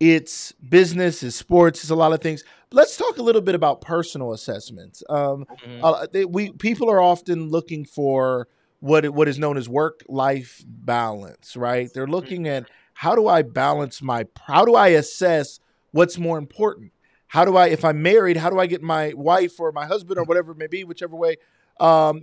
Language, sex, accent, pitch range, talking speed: English, male, American, 135-185 Hz, 195 wpm